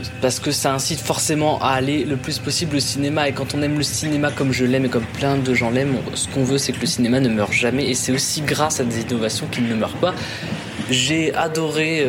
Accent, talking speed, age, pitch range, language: French, 250 wpm, 20-39, 125-155 Hz, French